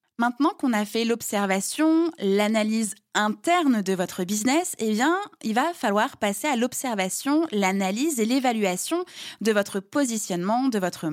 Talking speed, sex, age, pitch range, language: 140 wpm, female, 20-39, 195-280 Hz, French